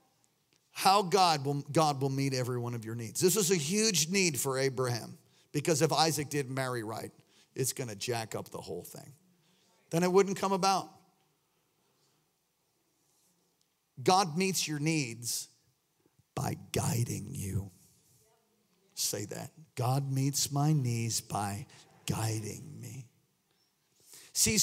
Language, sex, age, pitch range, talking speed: English, male, 50-69, 150-225 Hz, 130 wpm